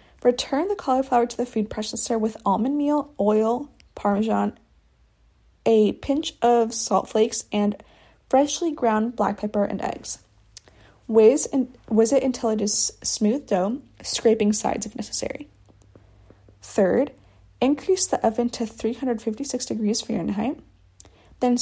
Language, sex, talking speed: English, female, 125 wpm